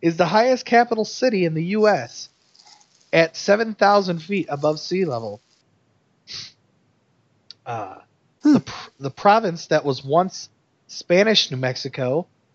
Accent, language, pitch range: American, English, 135-190 Hz